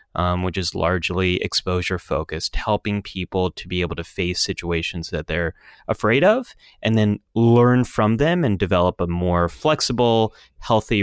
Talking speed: 150 wpm